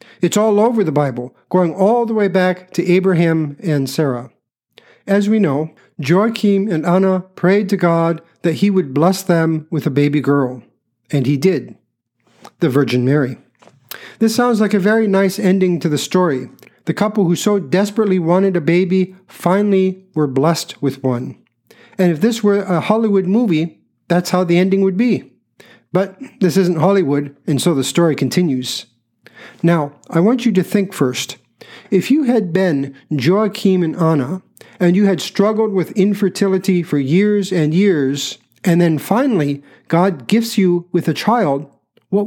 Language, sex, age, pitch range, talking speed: English, male, 50-69, 160-200 Hz, 165 wpm